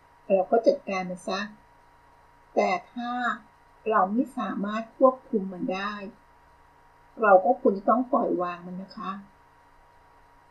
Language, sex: Thai, female